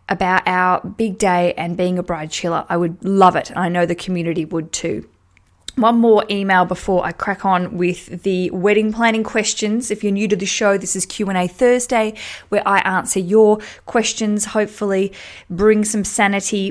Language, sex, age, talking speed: English, female, 20-39, 185 wpm